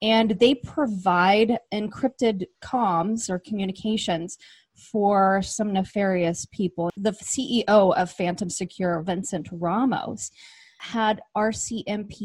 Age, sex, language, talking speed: 20-39, female, English, 100 wpm